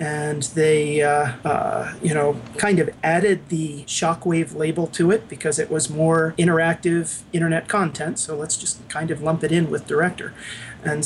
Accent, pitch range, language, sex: American, 150-175 Hz, English, male